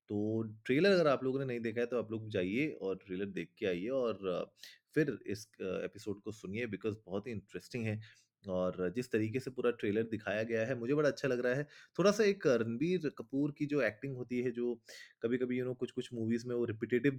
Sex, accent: male, native